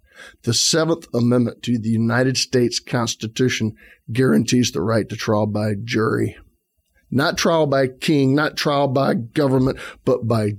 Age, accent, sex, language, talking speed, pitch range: 40-59, American, male, English, 140 wpm, 110-130 Hz